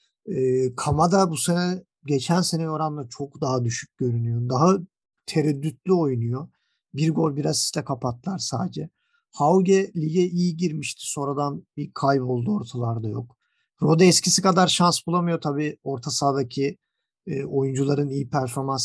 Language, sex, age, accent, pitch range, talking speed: Turkish, male, 50-69, native, 130-165 Hz, 135 wpm